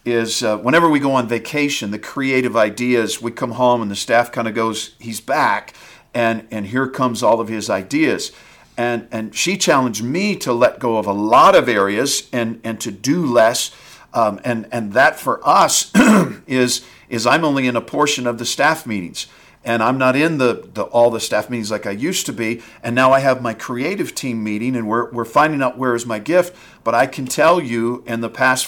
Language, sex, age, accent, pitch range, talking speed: English, male, 50-69, American, 115-135 Hz, 220 wpm